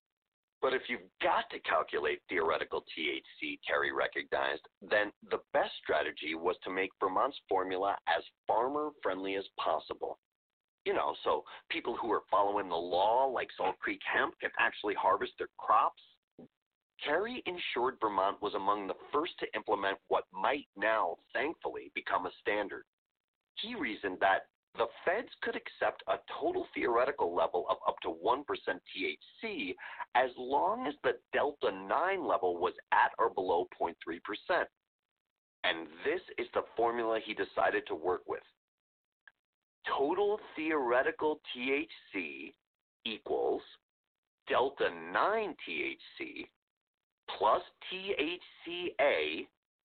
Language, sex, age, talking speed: English, male, 40-59, 125 wpm